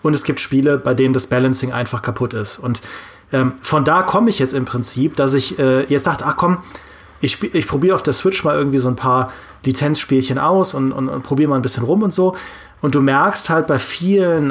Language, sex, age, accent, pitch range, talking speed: German, male, 30-49, German, 125-155 Hz, 230 wpm